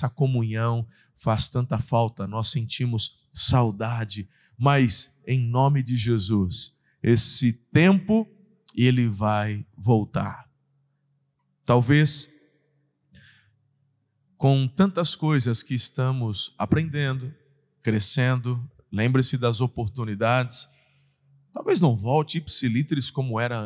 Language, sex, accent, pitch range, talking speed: Portuguese, male, Brazilian, 115-140 Hz, 85 wpm